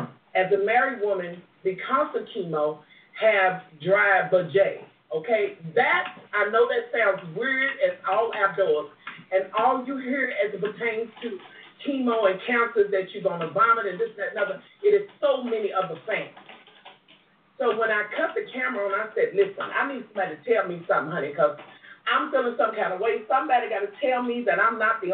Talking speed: 195 wpm